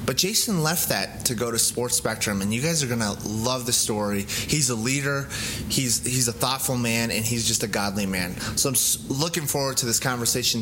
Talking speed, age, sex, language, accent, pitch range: 220 wpm, 20-39, male, English, American, 115-150 Hz